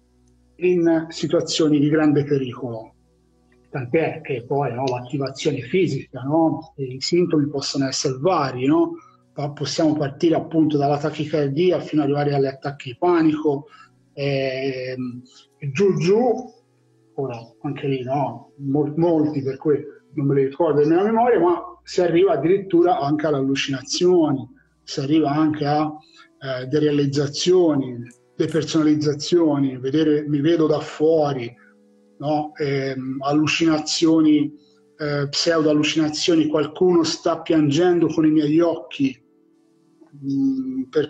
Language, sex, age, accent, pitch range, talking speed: Italian, male, 40-59, native, 135-165 Hz, 120 wpm